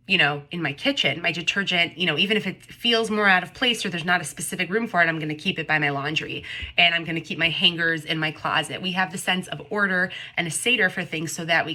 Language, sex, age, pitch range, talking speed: English, female, 20-39, 160-200 Hz, 290 wpm